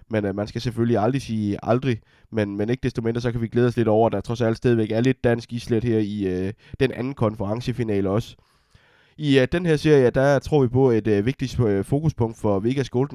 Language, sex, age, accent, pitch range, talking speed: Danish, male, 20-39, native, 105-120 Hz, 235 wpm